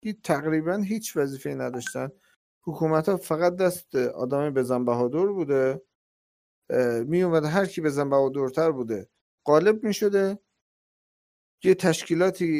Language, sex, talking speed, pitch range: Persian, male, 125 wpm, 130-195 Hz